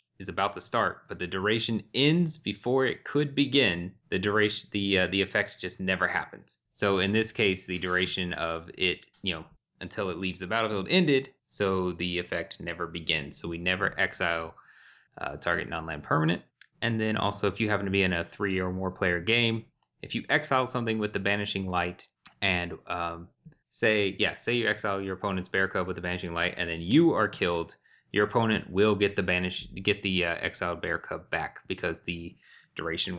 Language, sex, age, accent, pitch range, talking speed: English, male, 20-39, American, 90-105 Hz, 195 wpm